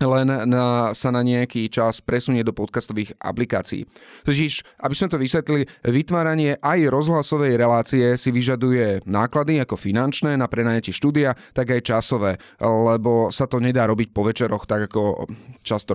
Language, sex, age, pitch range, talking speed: Slovak, male, 30-49, 110-135 Hz, 150 wpm